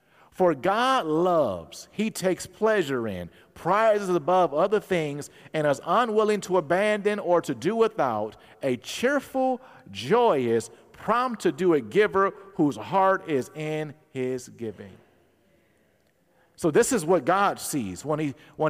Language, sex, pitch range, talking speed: English, male, 155-210 Hz, 130 wpm